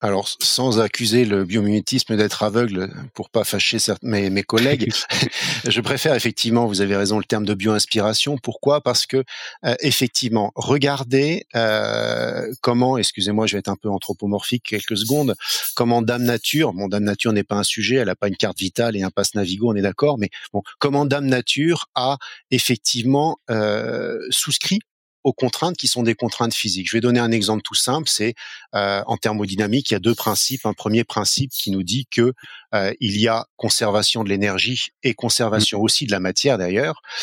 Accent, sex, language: French, male, French